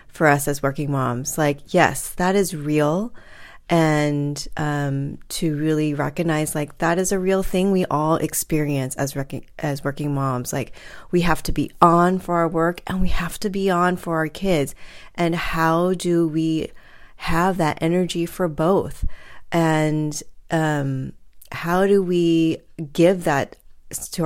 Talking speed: 155 wpm